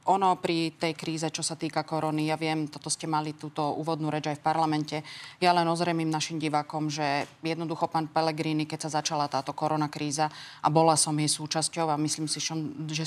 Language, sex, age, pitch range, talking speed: Slovak, female, 30-49, 155-175 Hz, 195 wpm